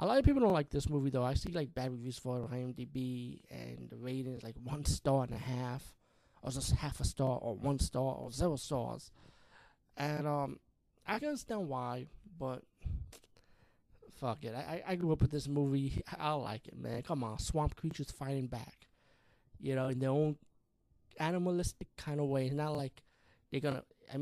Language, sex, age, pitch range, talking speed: English, male, 20-39, 130-150 Hz, 195 wpm